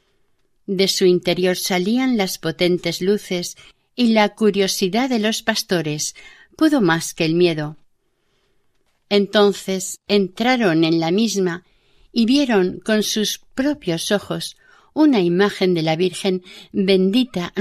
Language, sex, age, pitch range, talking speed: Spanish, female, 50-69, 165-205 Hz, 120 wpm